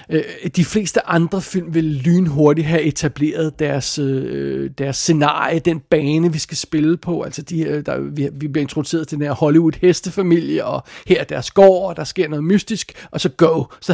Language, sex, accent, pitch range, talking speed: Danish, male, native, 150-180 Hz, 180 wpm